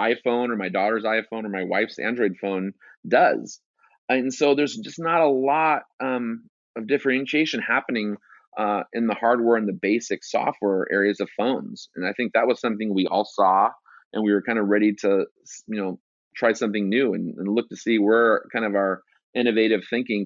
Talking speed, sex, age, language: 195 wpm, male, 30-49, English